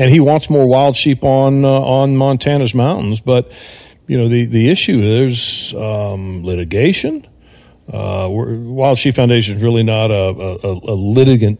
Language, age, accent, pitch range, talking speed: English, 40-59, American, 110-130 Hz, 165 wpm